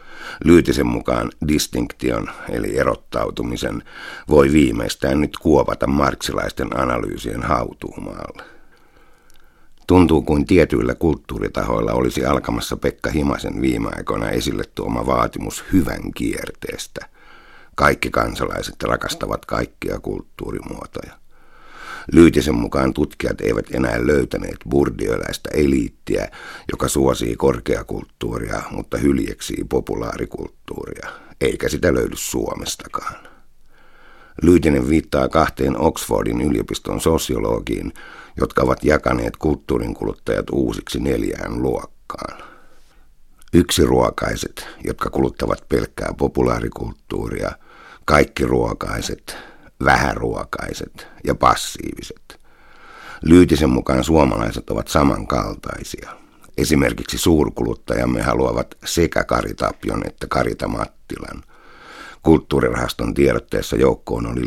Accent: native